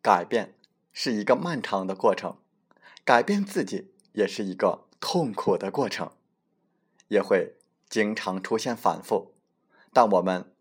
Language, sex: Chinese, male